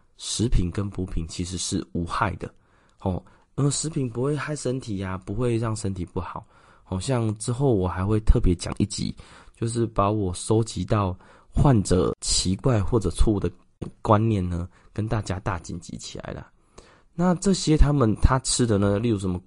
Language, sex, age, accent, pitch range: Chinese, male, 20-39, native, 90-120 Hz